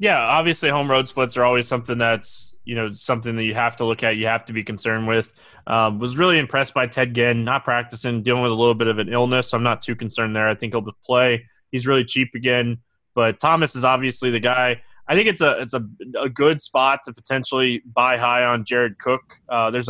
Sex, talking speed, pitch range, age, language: male, 240 wpm, 120-145 Hz, 20-39, English